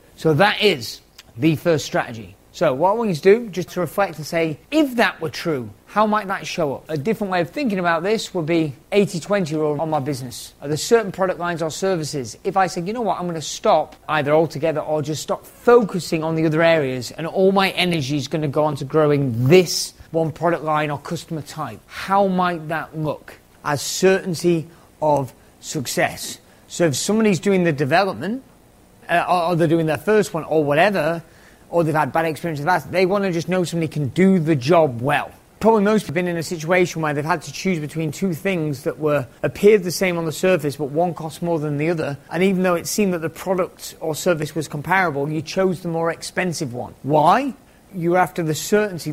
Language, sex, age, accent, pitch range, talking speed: English, male, 30-49, British, 150-185 Hz, 220 wpm